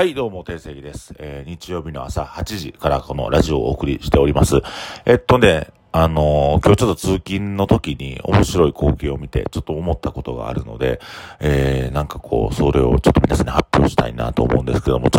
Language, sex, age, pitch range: Japanese, male, 40-59, 70-100 Hz